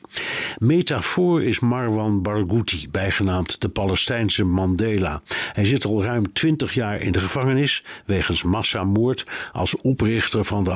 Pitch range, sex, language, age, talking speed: 95-120 Hz, male, Dutch, 60-79, 130 wpm